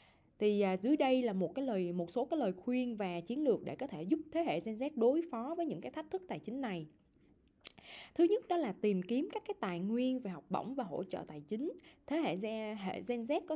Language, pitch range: Vietnamese, 185-255 Hz